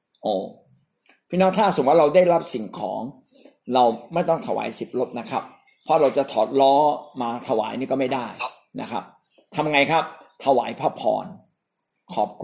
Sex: male